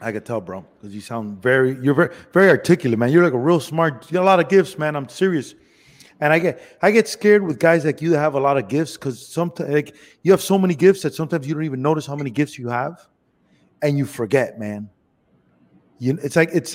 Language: English